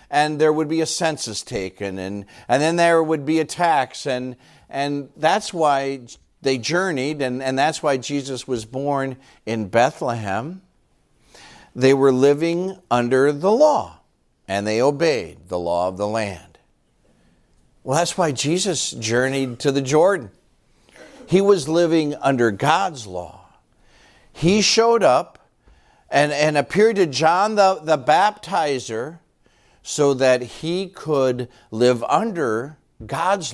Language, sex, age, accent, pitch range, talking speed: English, male, 50-69, American, 110-155 Hz, 135 wpm